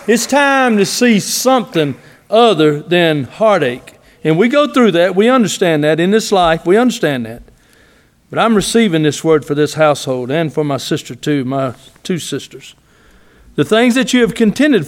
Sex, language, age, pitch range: male, English, 50-69, 135-185 Hz